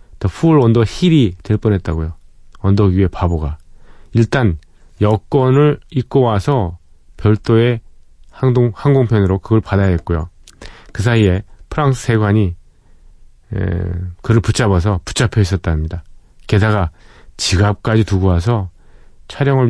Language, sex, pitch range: Korean, male, 90-115 Hz